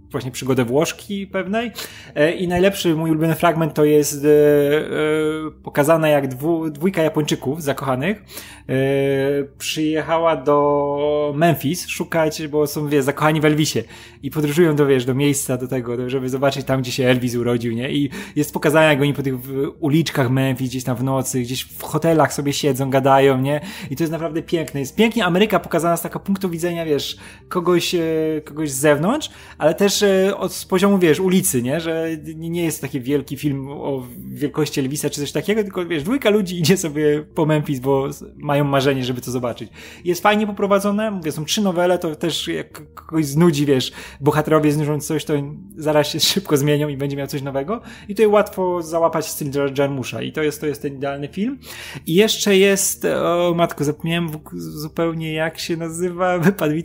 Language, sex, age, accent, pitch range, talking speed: Polish, male, 20-39, native, 140-175 Hz, 175 wpm